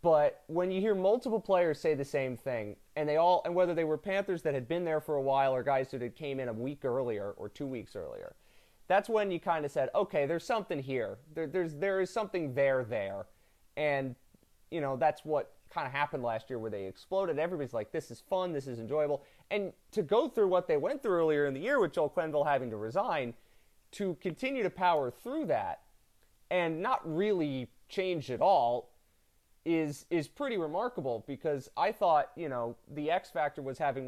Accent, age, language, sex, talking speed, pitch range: American, 30-49, English, male, 210 wpm, 125-180 Hz